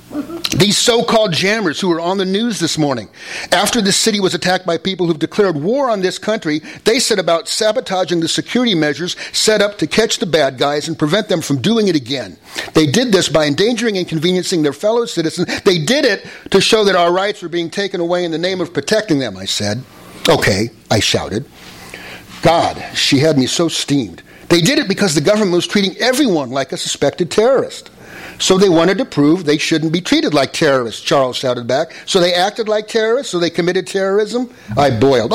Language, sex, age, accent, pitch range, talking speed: English, male, 50-69, American, 145-195 Hz, 205 wpm